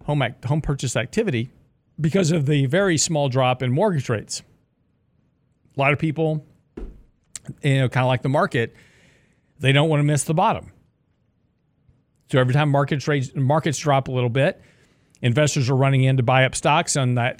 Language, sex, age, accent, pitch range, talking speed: English, male, 40-59, American, 125-150 Hz, 170 wpm